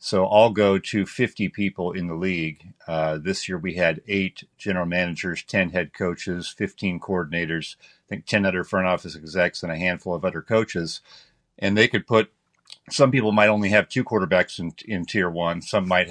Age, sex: 50-69, male